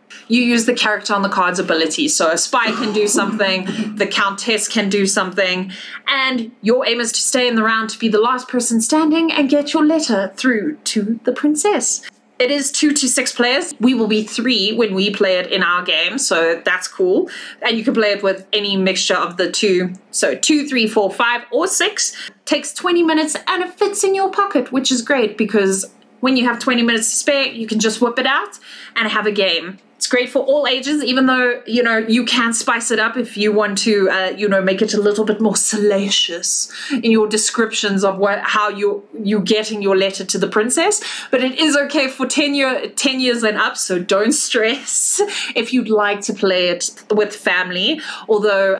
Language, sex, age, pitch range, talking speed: English, female, 20-39, 205-265 Hz, 215 wpm